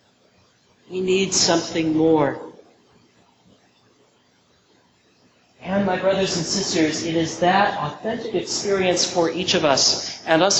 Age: 40-59